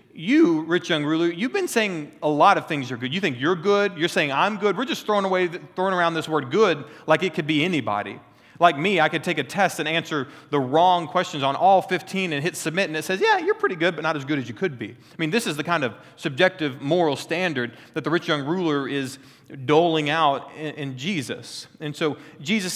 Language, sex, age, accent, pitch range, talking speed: English, male, 30-49, American, 125-175 Hz, 245 wpm